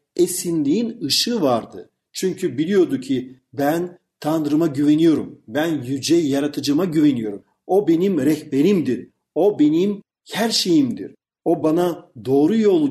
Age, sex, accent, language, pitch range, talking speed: 50-69, male, native, Turkish, 140-200 Hz, 110 wpm